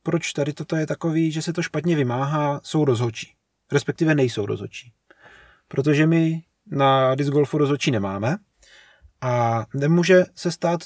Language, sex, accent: Czech, male, native